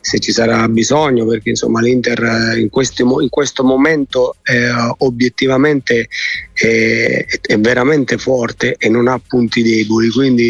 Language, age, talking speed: Italian, 30-49, 135 wpm